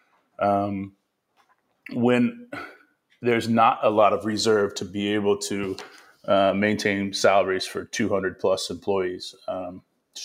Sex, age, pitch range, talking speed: male, 30-49, 100-120 Hz, 125 wpm